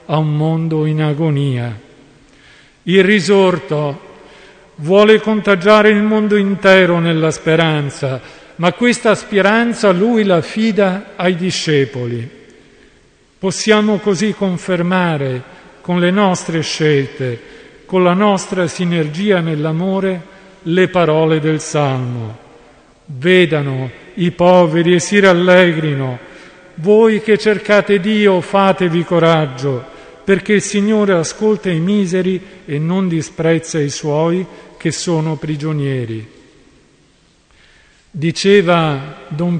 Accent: native